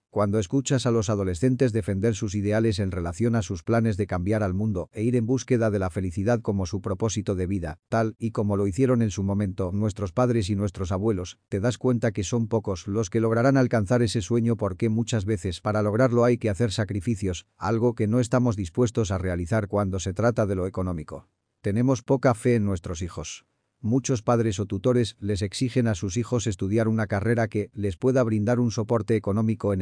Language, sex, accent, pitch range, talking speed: Spanish, male, Spanish, 100-120 Hz, 205 wpm